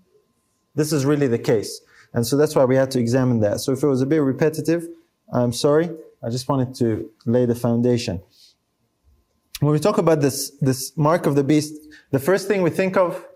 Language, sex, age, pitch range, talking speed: English, male, 30-49, 135-185 Hz, 205 wpm